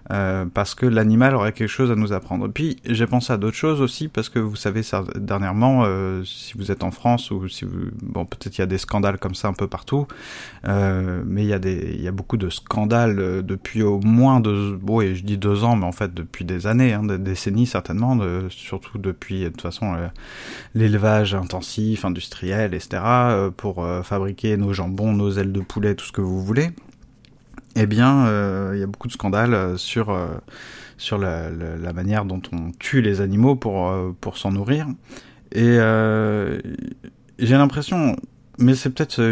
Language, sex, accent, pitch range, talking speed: French, male, French, 95-115 Hz, 205 wpm